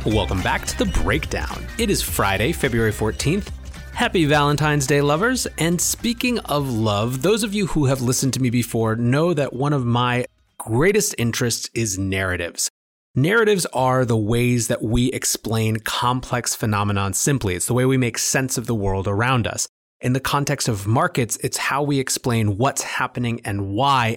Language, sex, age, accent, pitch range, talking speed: English, male, 30-49, American, 110-145 Hz, 175 wpm